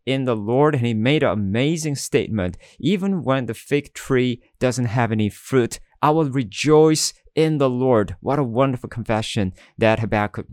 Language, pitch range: English, 110-140 Hz